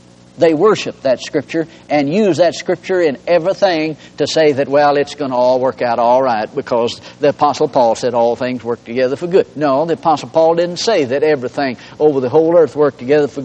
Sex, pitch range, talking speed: male, 125-205 Hz, 215 wpm